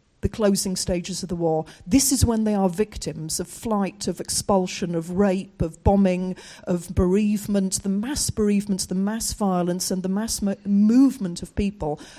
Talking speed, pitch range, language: 165 wpm, 175-205 Hz, English